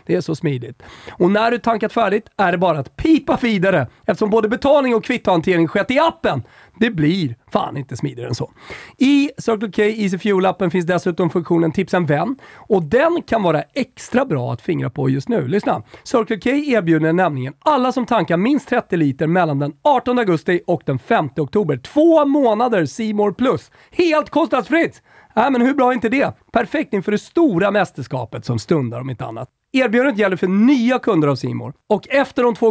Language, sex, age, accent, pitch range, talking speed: Swedish, male, 40-59, native, 145-235 Hz, 195 wpm